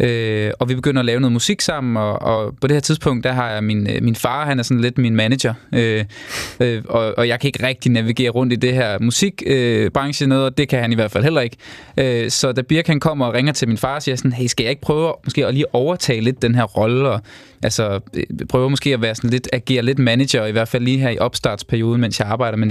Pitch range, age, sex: 115-140 Hz, 20-39, male